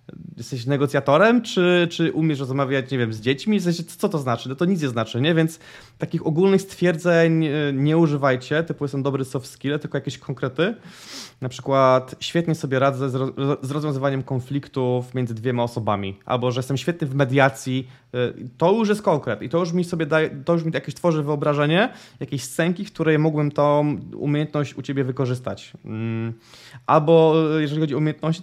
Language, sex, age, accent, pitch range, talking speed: Polish, male, 20-39, native, 130-165 Hz, 175 wpm